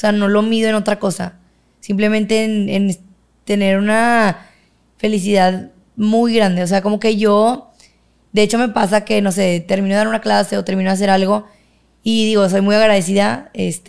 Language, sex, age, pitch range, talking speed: Spanish, female, 20-39, 190-220 Hz, 185 wpm